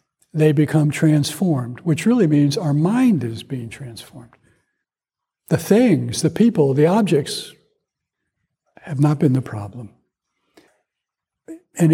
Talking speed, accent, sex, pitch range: 115 wpm, American, male, 145-175 Hz